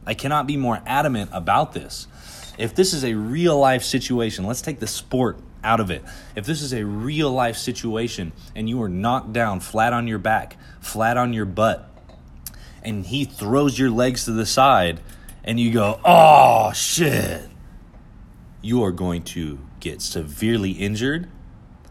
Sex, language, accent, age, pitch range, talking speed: male, English, American, 30-49, 85-120 Hz, 160 wpm